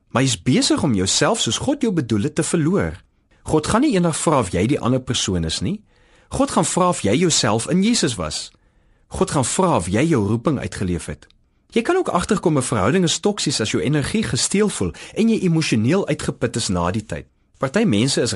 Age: 40-59